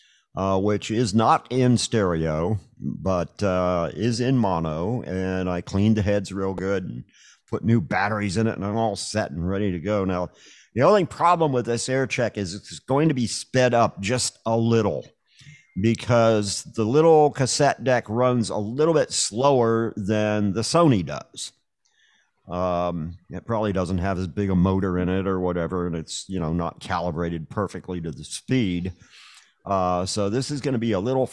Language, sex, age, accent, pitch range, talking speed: English, male, 50-69, American, 95-125 Hz, 185 wpm